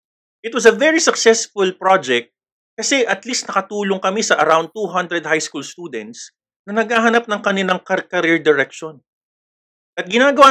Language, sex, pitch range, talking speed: Filipino, male, 165-225 Hz, 145 wpm